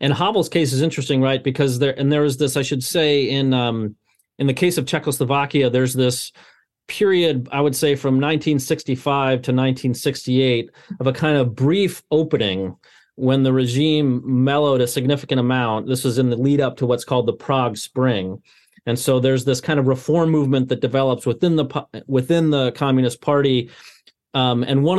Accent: American